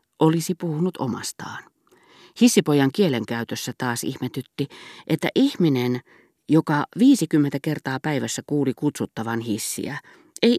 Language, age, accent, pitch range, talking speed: Finnish, 40-59, native, 120-185 Hz, 95 wpm